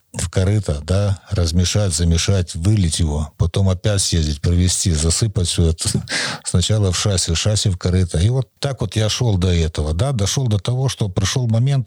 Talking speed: 180 wpm